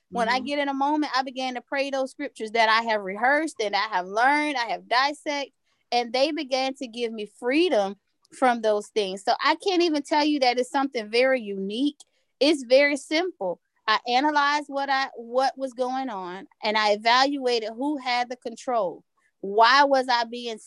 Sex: female